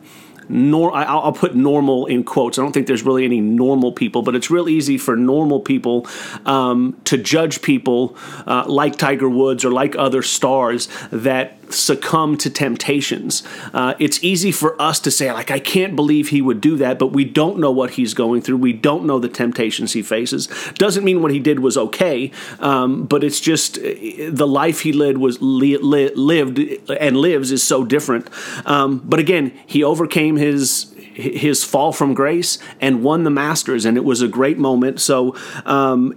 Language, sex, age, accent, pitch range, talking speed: English, male, 40-59, American, 130-150 Hz, 185 wpm